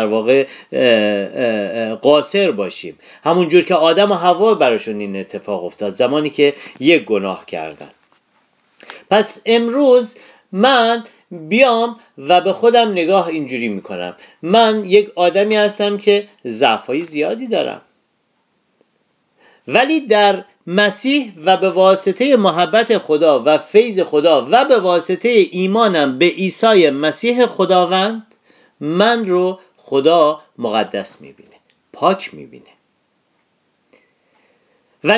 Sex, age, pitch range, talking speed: male, 40-59, 140-225 Hz, 110 wpm